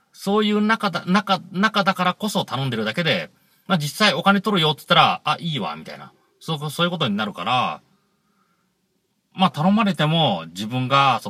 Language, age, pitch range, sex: Japanese, 40-59, 140-195 Hz, male